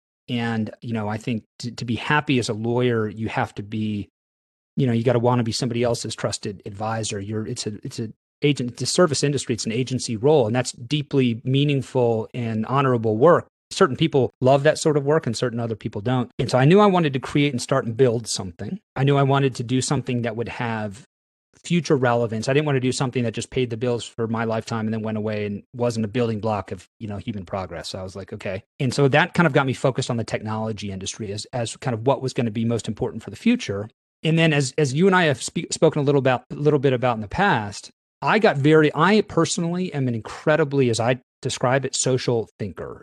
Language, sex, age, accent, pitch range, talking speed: English, male, 30-49, American, 115-140 Hz, 250 wpm